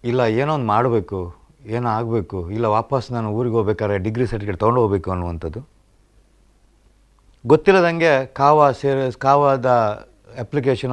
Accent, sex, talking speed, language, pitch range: native, male, 100 wpm, Kannada, 110-135 Hz